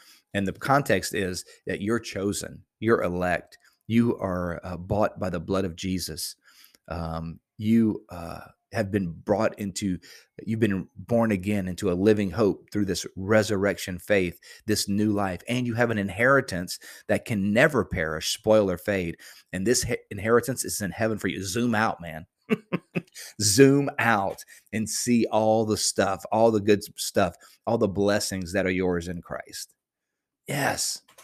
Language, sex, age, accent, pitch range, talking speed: English, male, 30-49, American, 95-115 Hz, 160 wpm